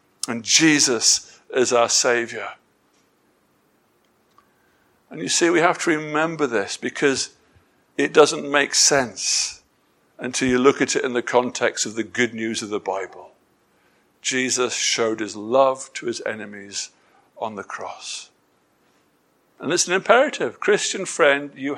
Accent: British